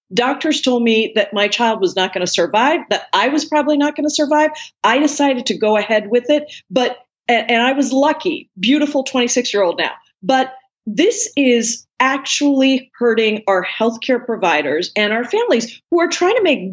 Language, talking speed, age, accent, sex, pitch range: English, 180 wpm, 40-59, American, female, 205-290 Hz